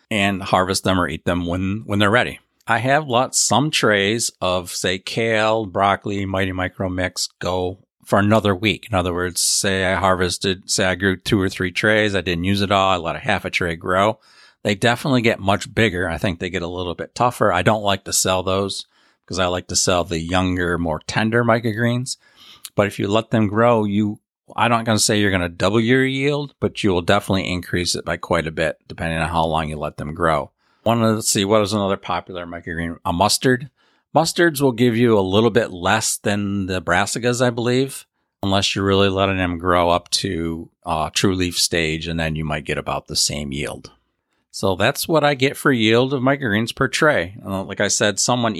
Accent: American